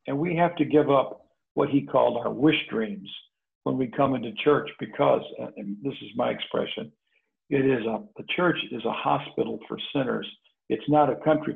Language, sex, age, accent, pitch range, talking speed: English, male, 60-79, American, 140-180 Hz, 185 wpm